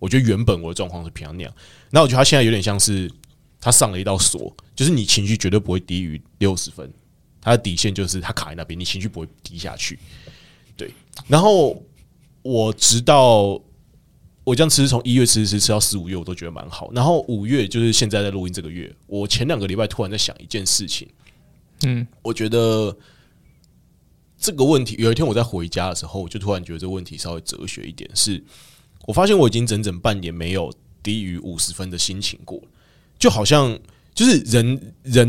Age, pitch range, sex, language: 20-39, 95-120 Hz, male, Chinese